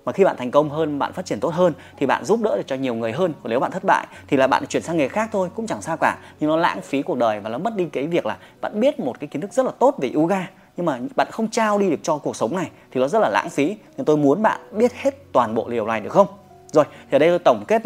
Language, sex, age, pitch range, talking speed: Vietnamese, male, 20-39, 140-200 Hz, 325 wpm